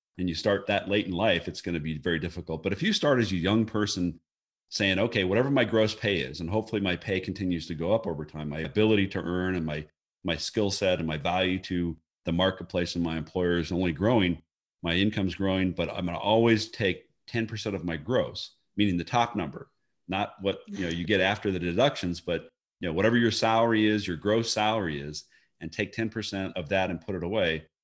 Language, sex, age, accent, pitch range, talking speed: English, male, 40-59, American, 85-105 Hz, 220 wpm